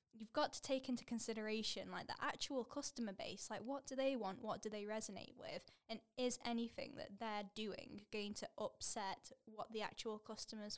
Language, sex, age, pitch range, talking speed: English, female, 10-29, 195-230 Hz, 190 wpm